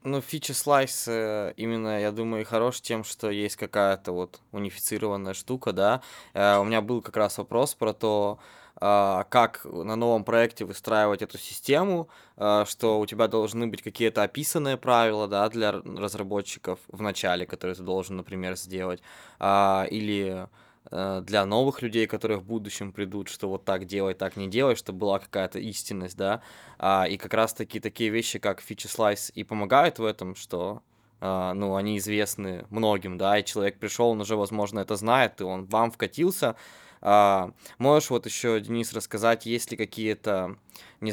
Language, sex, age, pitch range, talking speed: Russian, male, 20-39, 100-115 Hz, 165 wpm